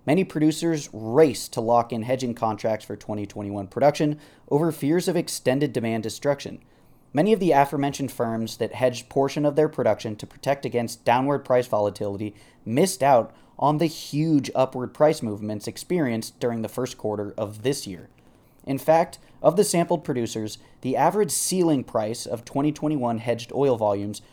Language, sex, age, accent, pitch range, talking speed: English, male, 30-49, American, 115-150 Hz, 160 wpm